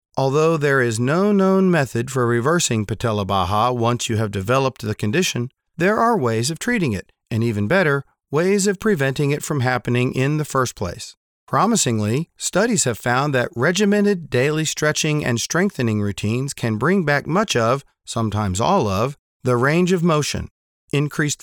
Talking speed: 165 wpm